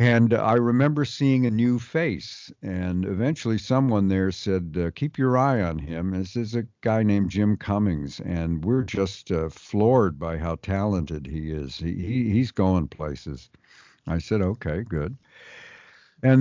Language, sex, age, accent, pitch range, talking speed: English, male, 50-69, American, 80-115 Hz, 155 wpm